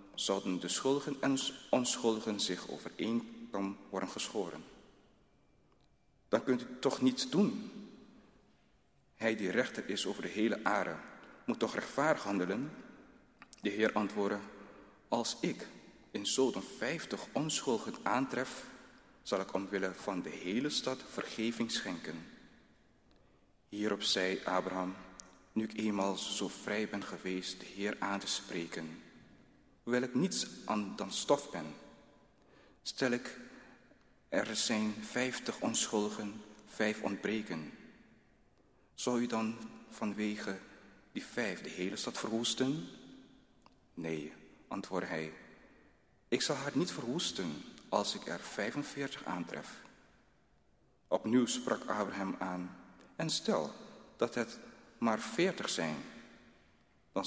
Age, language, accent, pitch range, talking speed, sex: 40-59, Dutch, Belgian, 95-120 Hz, 115 wpm, male